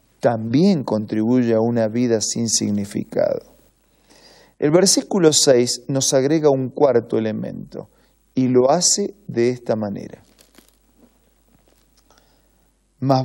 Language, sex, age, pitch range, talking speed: Spanish, male, 40-59, 115-145 Hz, 100 wpm